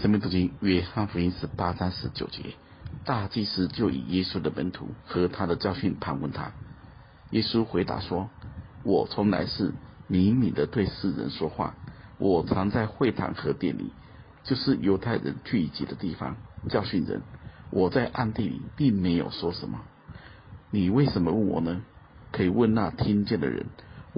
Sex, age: male, 50-69